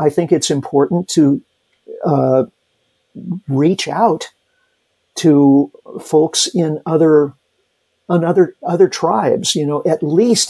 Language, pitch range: English, 130-165 Hz